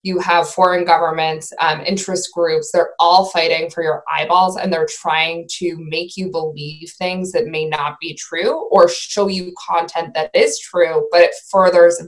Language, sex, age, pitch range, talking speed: English, female, 20-39, 165-210 Hz, 180 wpm